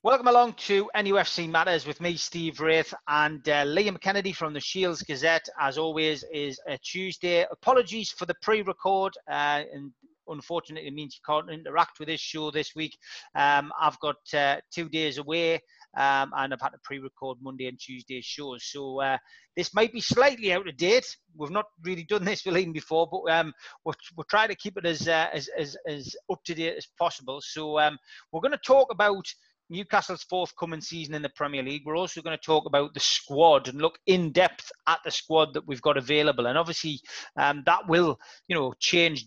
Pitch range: 145-175 Hz